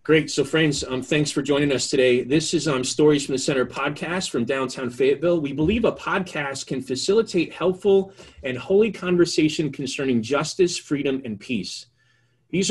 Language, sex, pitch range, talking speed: English, male, 125-165 Hz, 170 wpm